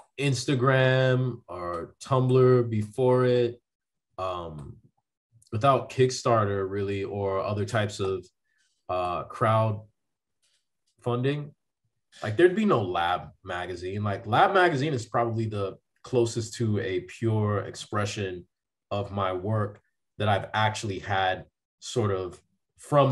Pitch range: 105-135 Hz